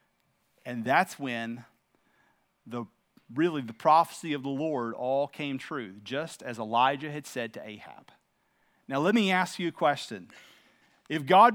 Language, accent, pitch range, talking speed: English, American, 160-245 Hz, 150 wpm